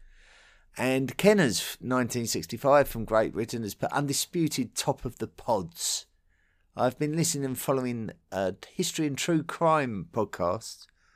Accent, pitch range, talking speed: British, 100-130 Hz, 130 wpm